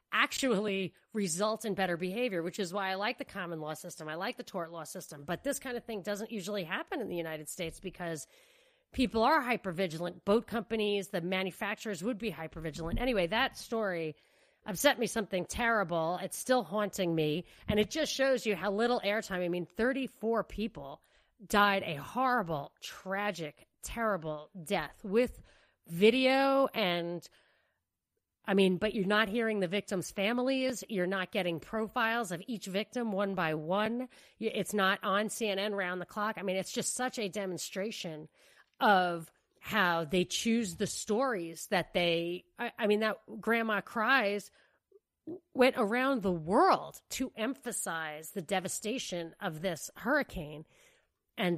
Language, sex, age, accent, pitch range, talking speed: English, female, 30-49, American, 180-230 Hz, 155 wpm